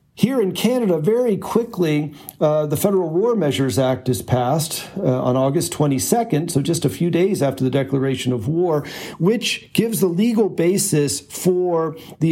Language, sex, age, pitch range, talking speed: English, male, 50-69, 130-170 Hz, 165 wpm